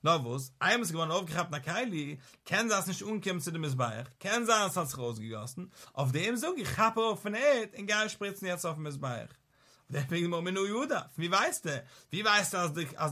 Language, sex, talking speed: English, male, 170 wpm